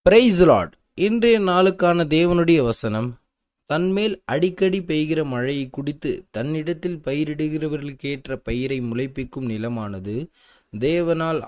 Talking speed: 85 wpm